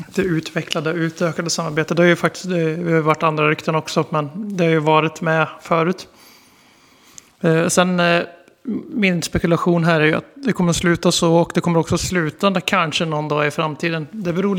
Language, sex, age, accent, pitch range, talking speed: Swedish, male, 30-49, native, 155-175 Hz, 190 wpm